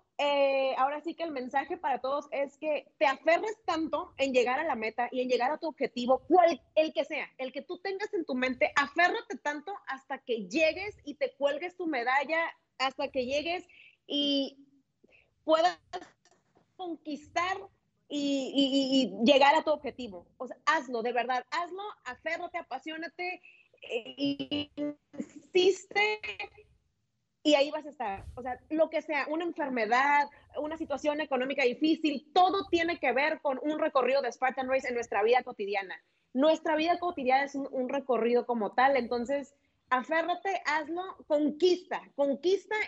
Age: 30-49